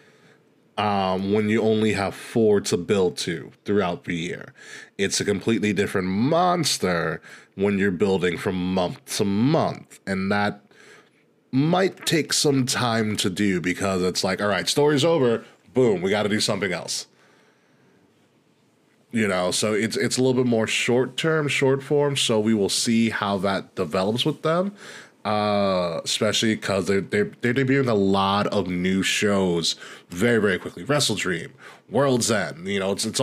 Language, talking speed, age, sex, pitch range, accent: English, 165 wpm, 20-39, male, 100-135 Hz, American